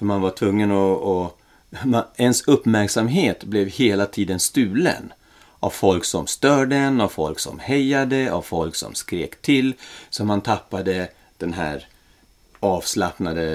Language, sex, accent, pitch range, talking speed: Swedish, male, native, 85-105 Hz, 145 wpm